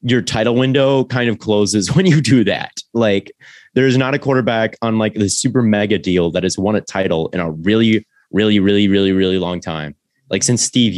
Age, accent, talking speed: 20-39, American, 210 wpm